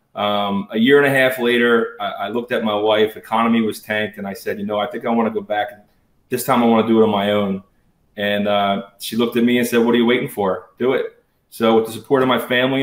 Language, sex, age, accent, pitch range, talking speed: English, male, 30-49, American, 110-125 Hz, 280 wpm